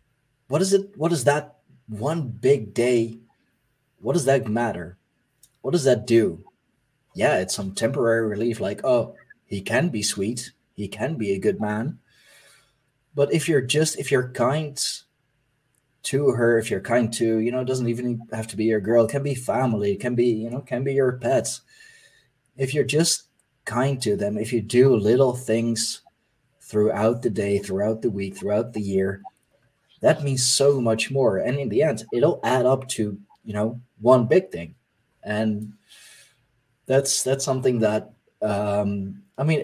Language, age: English, 20-39